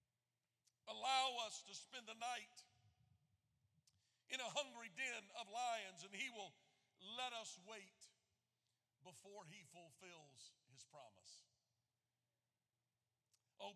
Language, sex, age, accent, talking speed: English, male, 50-69, American, 105 wpm